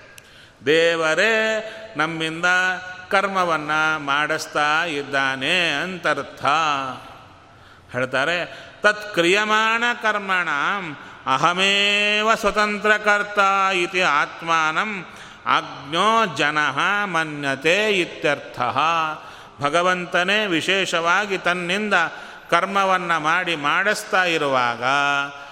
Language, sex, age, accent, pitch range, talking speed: Kannada, male, 30-49, native, 140-205 Hz, 55 wpm